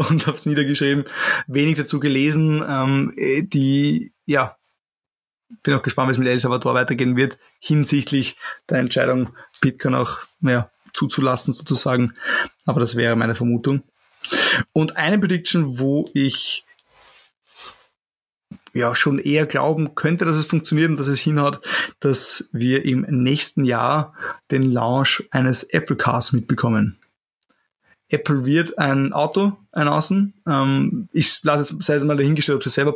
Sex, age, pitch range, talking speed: male, 20-39, 130-155 Hz, 140 wpm